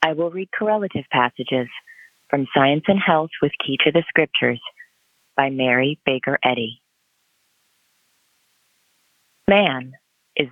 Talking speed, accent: 115 wpm, American